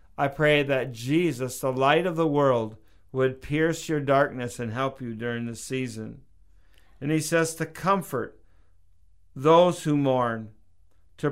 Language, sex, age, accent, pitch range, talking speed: English, male, 50-69, American, 115-150 Hz, 150 wpm